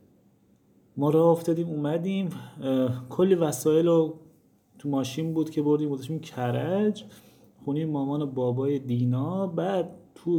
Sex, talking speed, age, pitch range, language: male, 115 wpm, 30-49, 125-155 Hz, Persian